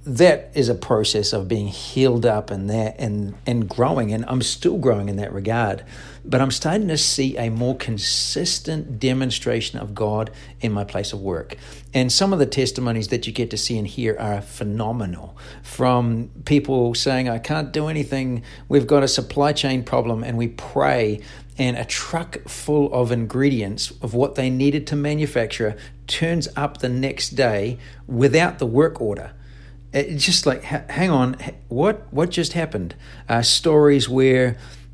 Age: 60-79